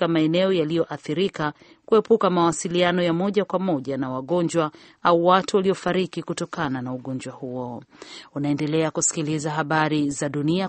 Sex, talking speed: female, 125 wpm